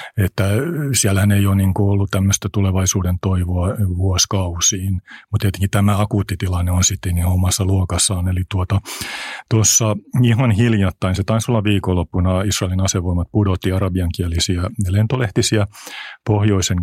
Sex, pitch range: male, 90-105 Hz